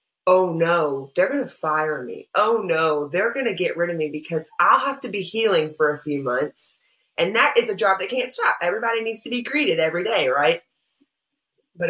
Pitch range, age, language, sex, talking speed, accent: 155-230 Hz, 20-39, English, female, 215 wpm, American